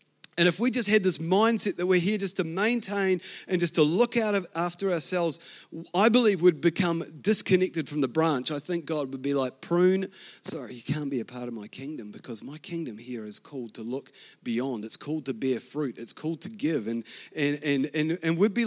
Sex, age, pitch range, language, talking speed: male, 30-49, 175-225 Hz, English, 225 wpm